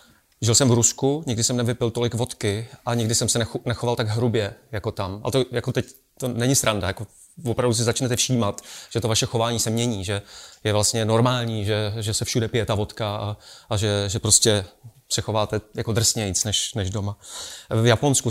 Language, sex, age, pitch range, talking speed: Czech, male, 30-49, 110-125 Hz, 195 wpm